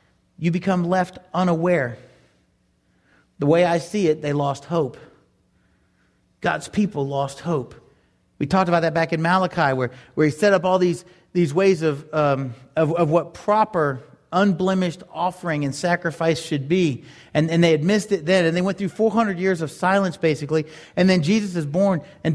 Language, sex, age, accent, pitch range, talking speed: English, male, 30-49, American, 155-195 Hz, 175 wpm